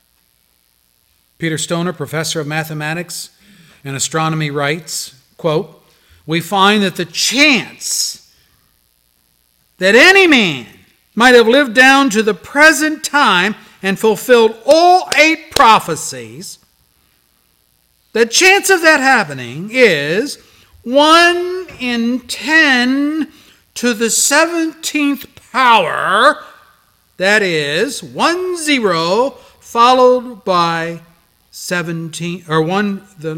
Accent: American